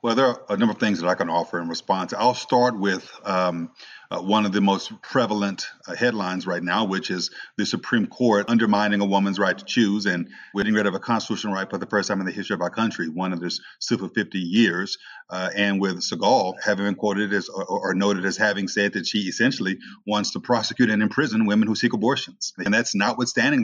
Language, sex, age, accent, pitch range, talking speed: English, male, 40-59, American, 95-120 Hz, 230 wpm